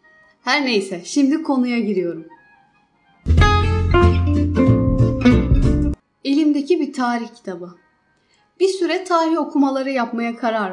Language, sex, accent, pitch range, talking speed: Turkish, female, native, 220-305 Hz, 85 wpm